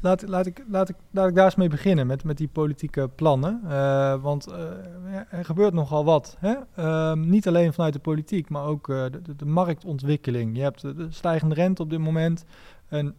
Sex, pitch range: male, 145-180 Hz